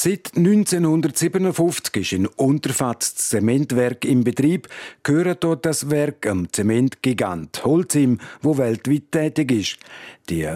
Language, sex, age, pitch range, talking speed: German, male, 50-69, 115-155 Hz, 115 wpm